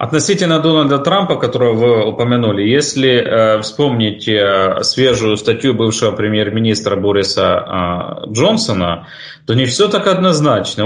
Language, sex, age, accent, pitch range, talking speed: Russian, male, 30-49, native, 100-130 Hz, 105 wpm